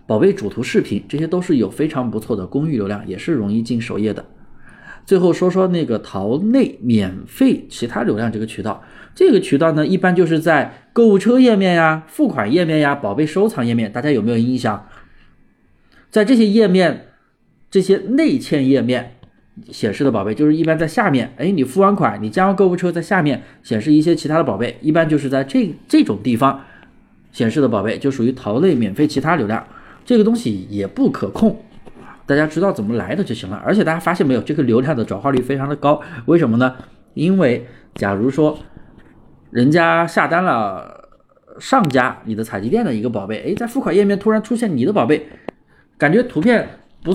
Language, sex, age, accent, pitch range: Chinese, male, 20-39, native, 125-195 Hz